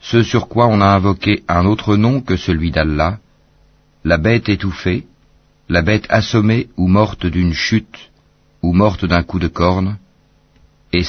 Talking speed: 155 wpm